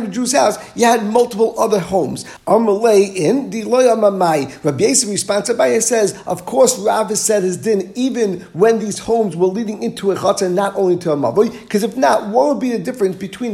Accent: American